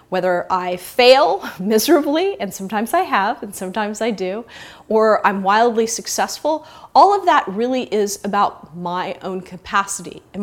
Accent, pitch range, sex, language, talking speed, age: American, 190-255 Hz, female, English, 150 wpm, 30-49